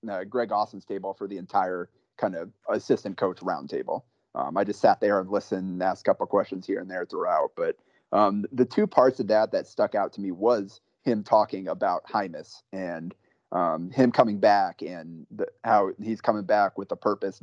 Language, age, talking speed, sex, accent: English, 30-49, 210 wpm, male, American